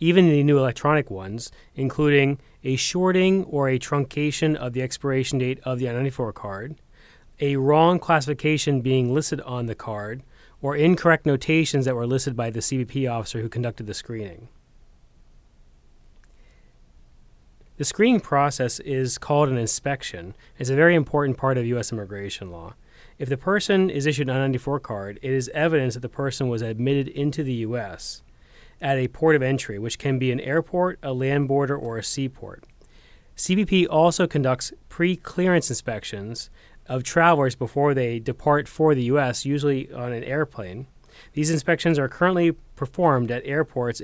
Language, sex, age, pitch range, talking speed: English, male, 30-49, 120-155 Hz, 160 wpm